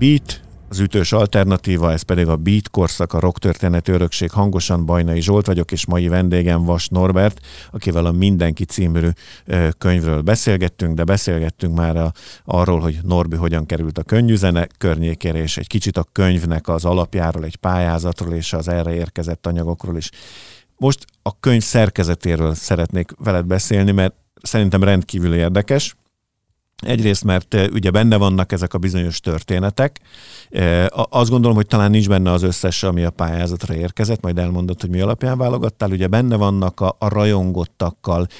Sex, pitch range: male, 85-105 Hz